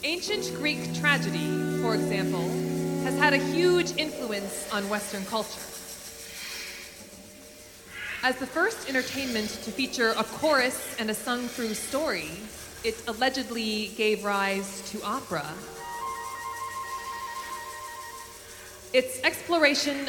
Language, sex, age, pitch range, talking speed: English, female, 20-39, 160-245 Hz, 100 wpm